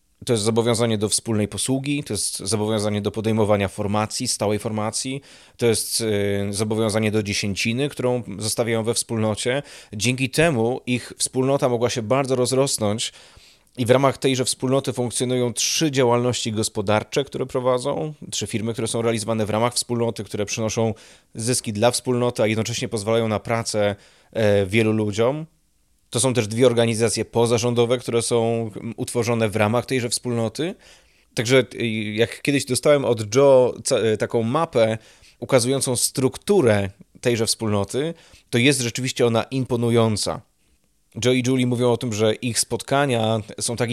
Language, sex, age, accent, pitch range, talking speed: Polish, male, 20-39, native, 110-125 Hz, 140 wpm